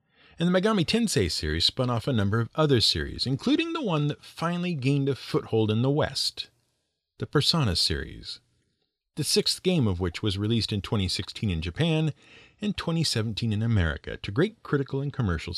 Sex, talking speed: male, 175 wpm